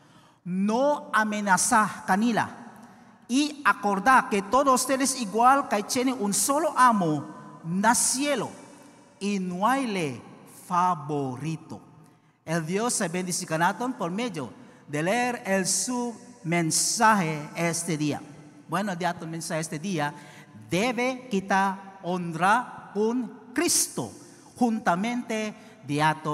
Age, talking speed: 50-69, 105 wpm